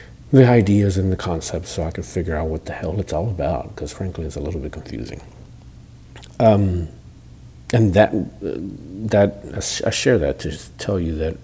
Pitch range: 80-95 Hz